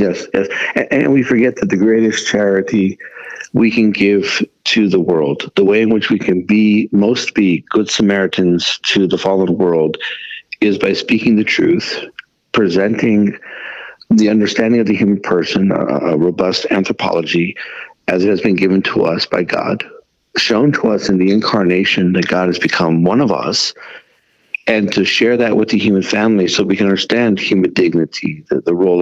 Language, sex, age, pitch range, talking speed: English, male, 60-79, 95-120 Hz, 175 wpm